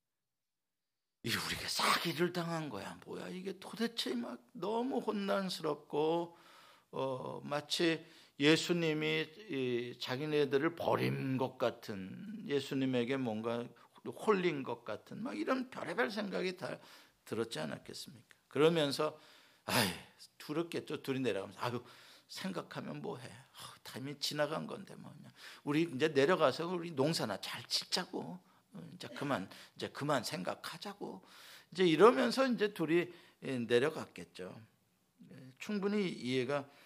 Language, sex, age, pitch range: Korean, male, 50-69, 130-210 Hz